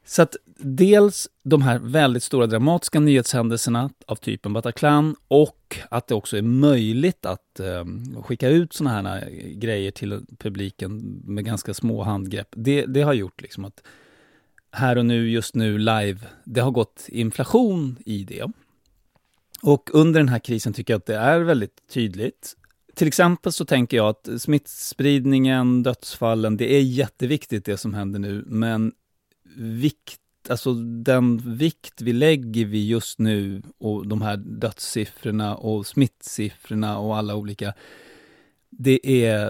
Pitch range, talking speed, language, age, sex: 105-135 Hz, 145 wpm, English, 30-49, male